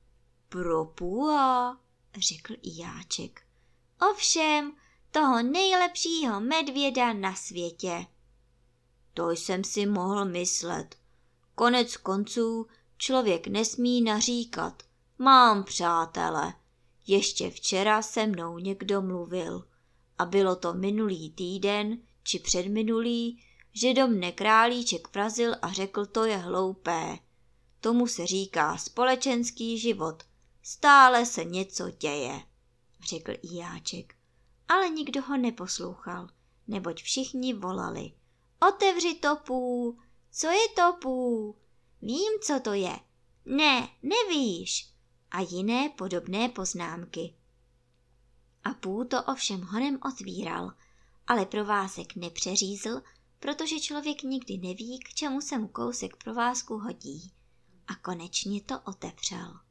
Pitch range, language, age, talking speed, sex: 175-255 Hz, Czech, 20-39, 105 wpm, male